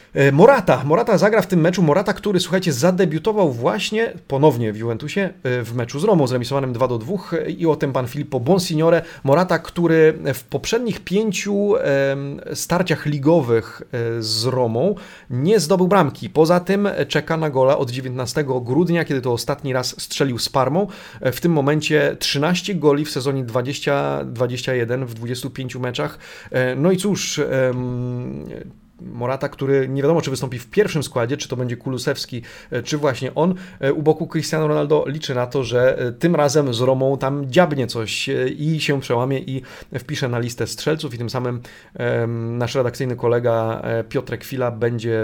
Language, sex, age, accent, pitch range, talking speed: Polish, male, 40-59, native, 125-160 Hz, 155 wpm